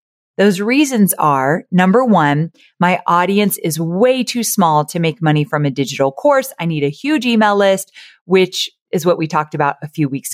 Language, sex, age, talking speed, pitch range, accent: English, female, 30-49, 190 wpm, 160-215 Hz, American